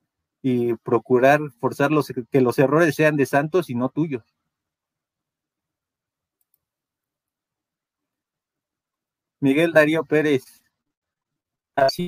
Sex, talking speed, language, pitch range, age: male, 85 wpm, Spanish, 125-155 Hz, 40-59